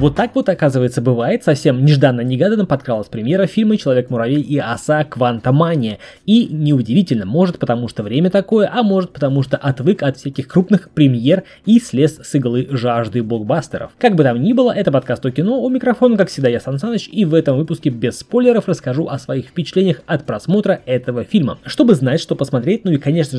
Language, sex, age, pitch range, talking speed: Russian, male, 20-39, 130-195 Hz, 185 wpm